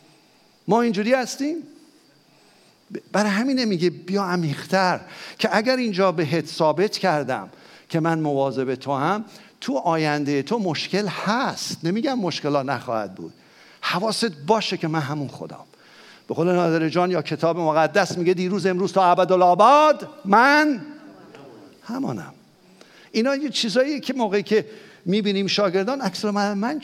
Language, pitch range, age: English, 160-215 Hz, 50-69